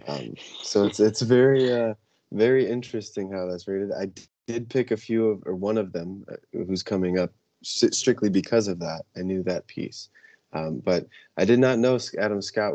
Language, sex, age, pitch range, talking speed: English, male, 20-39, 90-105 Hz, 200 wpm